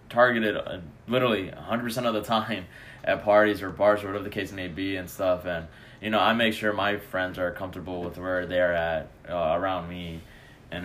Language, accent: English, American